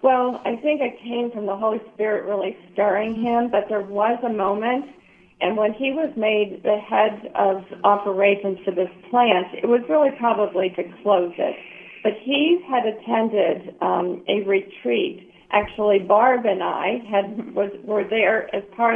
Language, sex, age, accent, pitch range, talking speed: English, female, 50-69, American, 190-225 Hz, 170 wpm